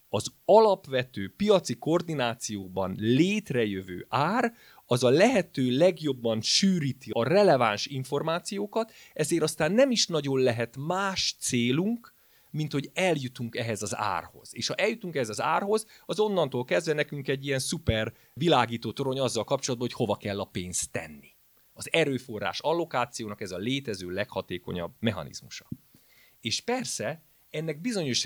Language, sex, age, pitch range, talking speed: Hungarian, male, 30-49, 115-175 Hz, 135 wpm